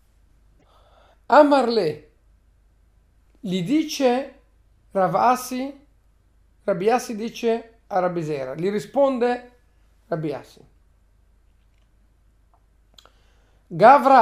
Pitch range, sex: 155-255 Hz, male